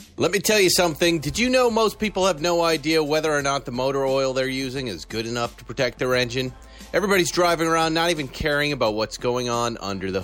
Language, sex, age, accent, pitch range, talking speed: English, male, 30-49, American, 125-175 Hz, 235 wpm